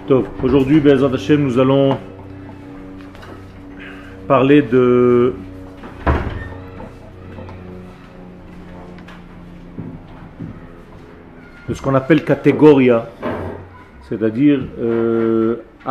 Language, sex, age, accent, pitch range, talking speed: French, male, 40-59, French, 95-140 Hz, 45 wpm